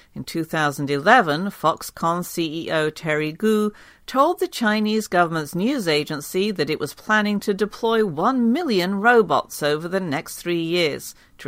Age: 50-69